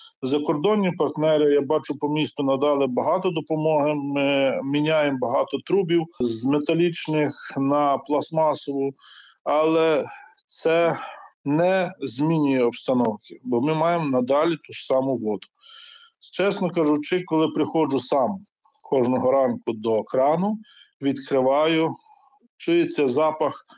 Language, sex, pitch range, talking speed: Ukrainian, male, 135-165 Hz, 105 wpm